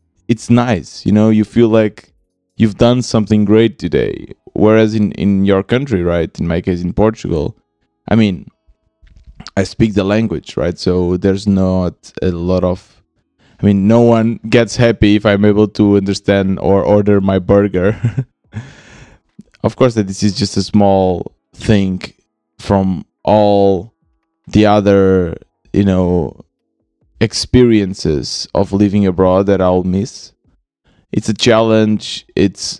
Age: 20-39